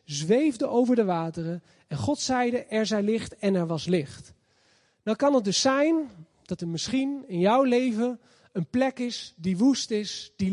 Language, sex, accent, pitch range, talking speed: Dutch, male, Dutch, 185-245 Hz, 180 wpm